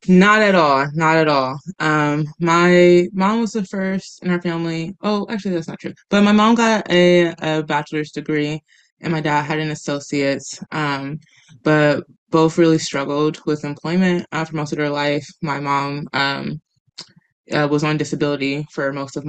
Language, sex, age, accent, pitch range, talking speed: English, female, 20-39, American, 150-180 Hz, 175 wpm